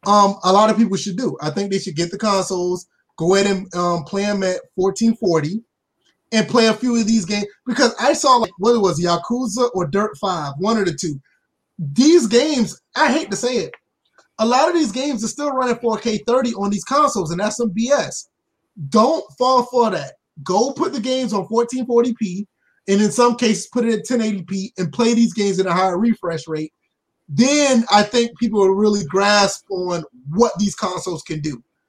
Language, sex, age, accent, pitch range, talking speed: English, male, 20-39, American, 185-235 Hz, 200 wpm